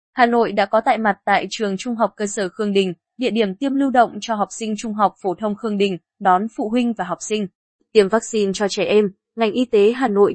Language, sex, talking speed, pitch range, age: Vietnamese, female, 255 wpm, 185-225 Hz, 20-39